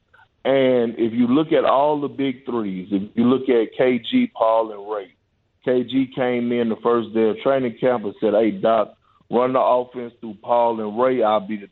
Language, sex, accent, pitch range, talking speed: English, male, American, 110-130 Hz, 205 wpm